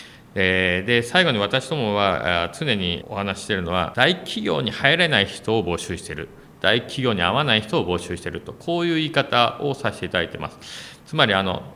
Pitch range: 90-130 Hz